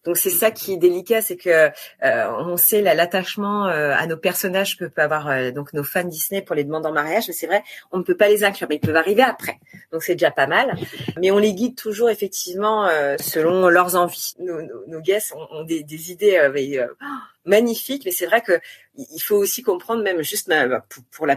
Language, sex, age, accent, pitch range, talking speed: French, female, 30-49, French, 165-215 Hz, 235 wpm